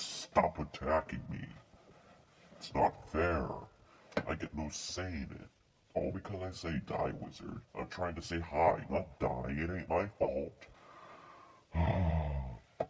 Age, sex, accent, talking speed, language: 60-79, female, American, 135 wpm, English